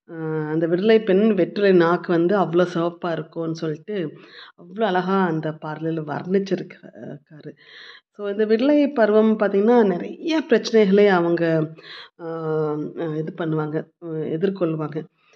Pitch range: 165-195 Hz